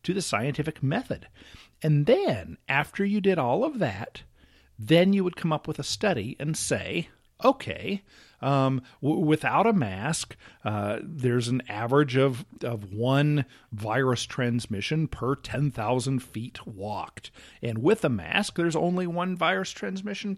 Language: English